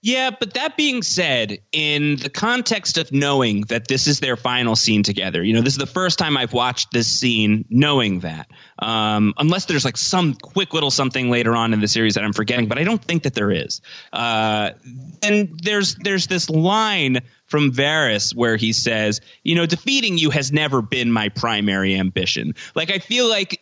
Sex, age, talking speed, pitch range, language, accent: male, 30-49, 200 wpm, 110-155 Hz, English, American